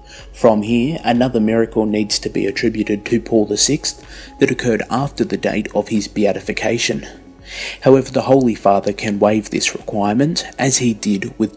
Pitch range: 105-115 Hz